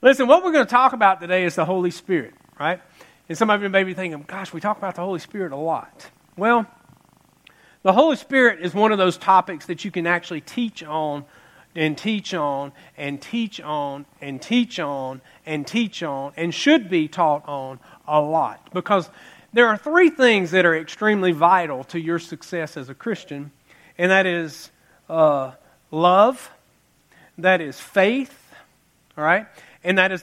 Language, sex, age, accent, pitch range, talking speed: English, male, 40-59, American, 165-220 Hz, 180 wpm